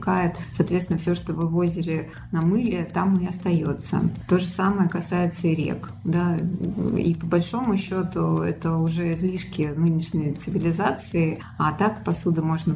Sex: female